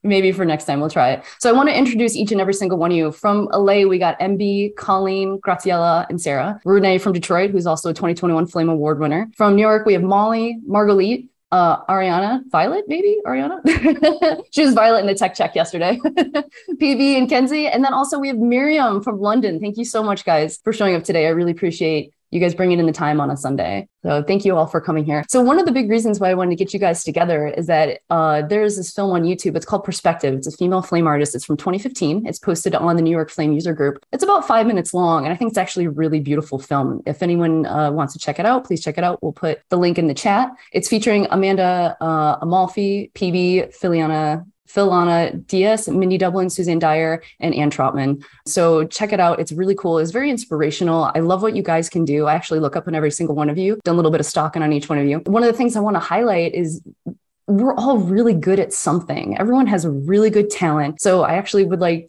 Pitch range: 160-210 Hz